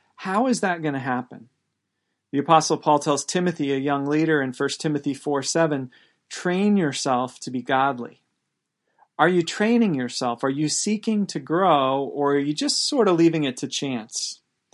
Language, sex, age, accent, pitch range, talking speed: English, male, 40-59, American, 145-185 Hz, 175 wpm